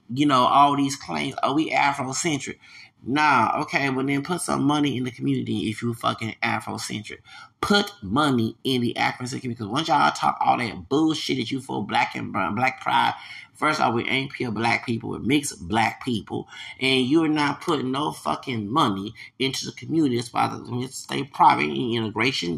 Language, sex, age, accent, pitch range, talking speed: English, male, 30-49, American, 110-140 Hz, 190 wpm